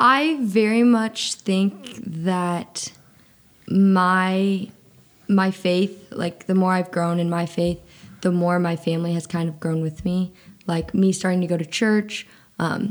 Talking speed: 160 wpm